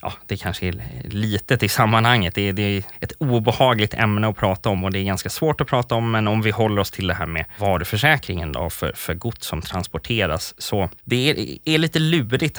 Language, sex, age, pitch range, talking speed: Swedish, male, 20-39, 90-120 Hz, 220 wpm